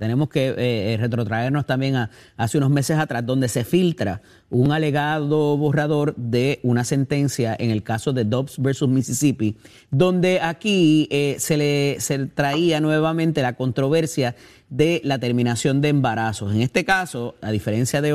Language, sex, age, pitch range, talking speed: Spanish, male, 30-49, 125-155 Hz, 155 wpm